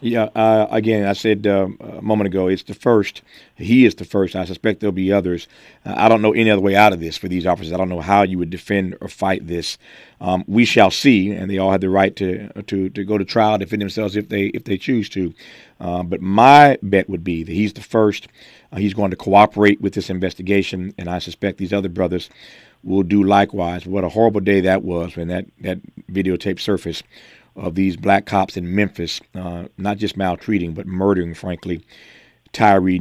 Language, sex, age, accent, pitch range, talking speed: English, male, 40-59, American, 90-105 Hz, 220 wpm